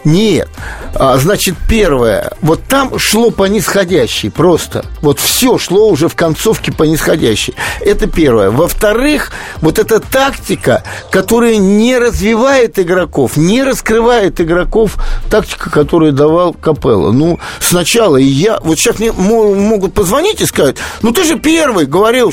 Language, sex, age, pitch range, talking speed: Russian, male, 50-69, 170-250 Hz, 135 wpm